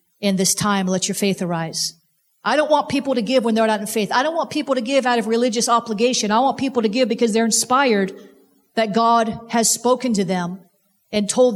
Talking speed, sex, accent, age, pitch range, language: 230 wpm, female, American, 40-59, 205-260 Hz, English